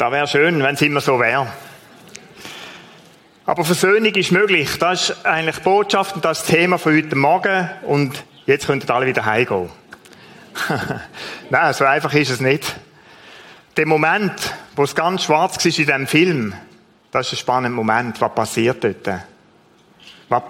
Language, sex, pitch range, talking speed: German, male, 150-180 Hz, 155 wpm